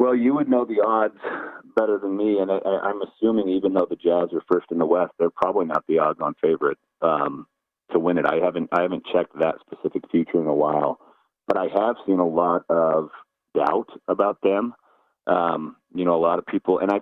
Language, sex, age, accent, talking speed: English, male, 40-59, American, 220 wpm